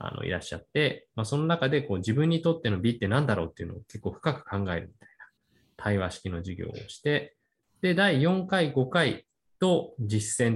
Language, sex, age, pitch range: Japanese, male, 20-39, 100-140 Hz